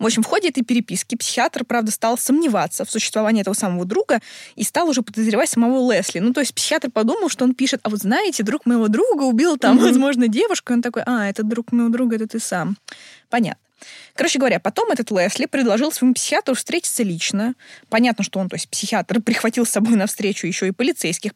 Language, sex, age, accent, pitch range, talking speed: Russian, female, 20-39, native, 195-250 Hz, 210 wpm